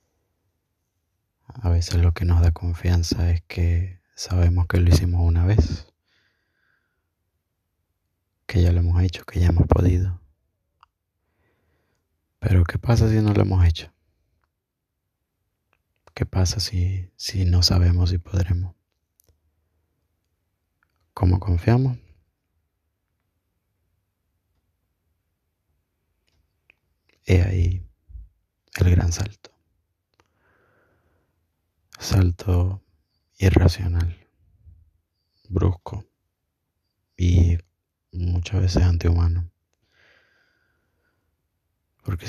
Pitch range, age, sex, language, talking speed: 85-95 Hz, 20-39, male, Spanish, 80 wpm